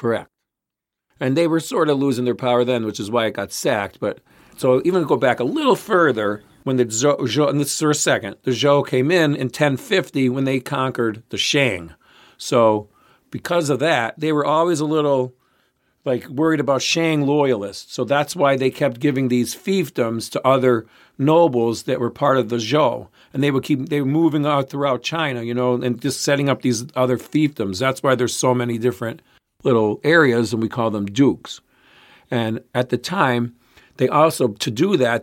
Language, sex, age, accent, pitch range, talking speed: English, male, 50-69, American, 120-145 Hz, 200 wpm